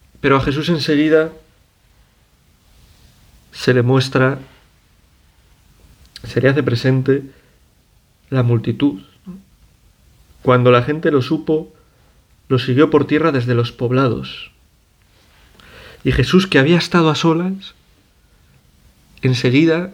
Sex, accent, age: male, Spanish, 40-59